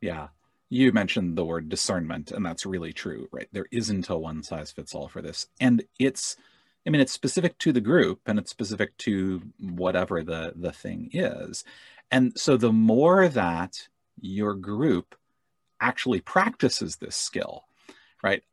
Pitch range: 90-125 Hz